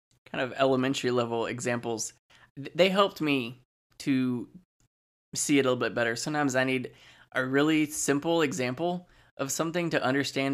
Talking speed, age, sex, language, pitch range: 150 wpm, 10-29, male, English, 125-145 Hz